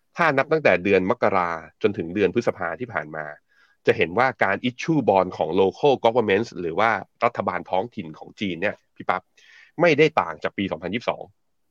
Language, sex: Thai, male